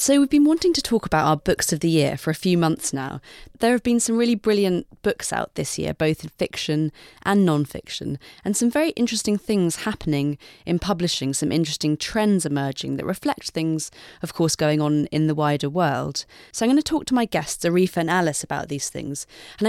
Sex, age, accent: female, 30-49, British